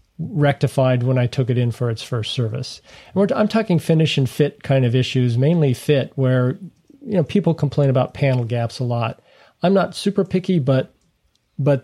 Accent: American